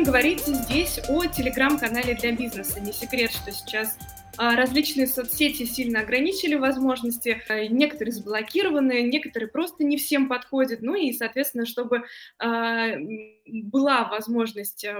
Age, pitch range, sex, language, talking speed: 20-39, 225-265 Hz, female, Russian, 110 wpm